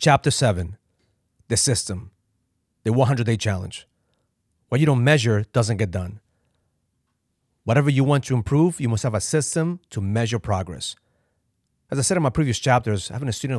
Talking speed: 170 wpm